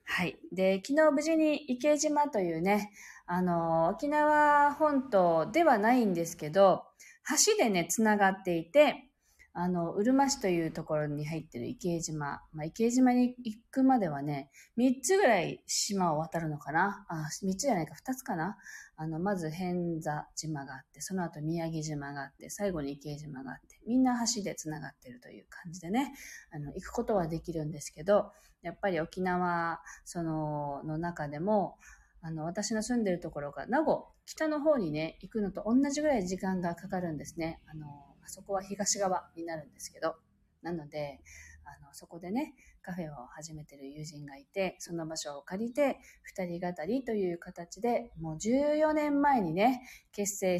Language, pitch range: Japanese, 155-225 Hz